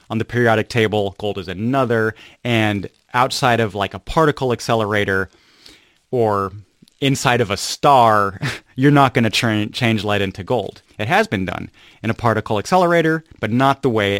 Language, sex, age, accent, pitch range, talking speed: English, male, 30-49, American, 105-135 Hz, 170 wpm